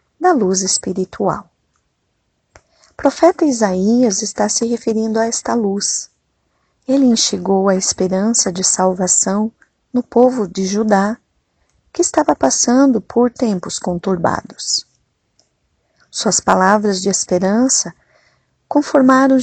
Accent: Brazilian